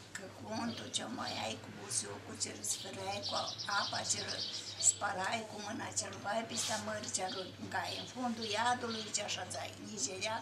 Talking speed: 175 wpm